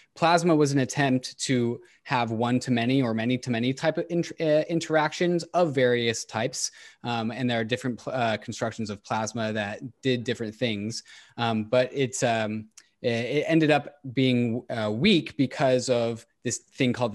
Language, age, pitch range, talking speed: English, 20-39, 110-135 Hz, 155 wpm